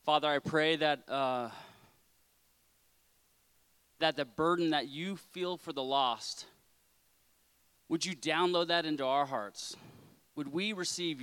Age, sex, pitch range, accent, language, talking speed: 30-49, male, 120-160 Hz, American, English, 130 wpm